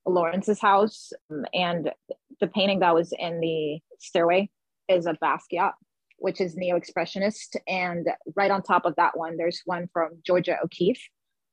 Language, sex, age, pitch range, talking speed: English, female, 20-39, 160-185 Hz, 145 wpm